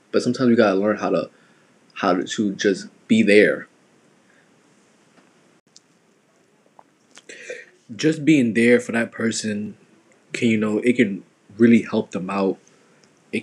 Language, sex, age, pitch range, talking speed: English, male, 20-39, 100-120 Hz, 130 wpm